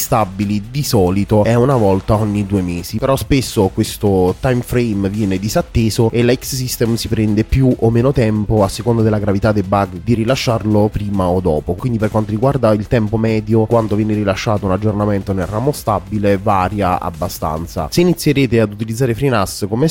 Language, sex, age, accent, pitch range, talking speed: Italian, male, 20-39, native, 105-125 Hz, 180 wpm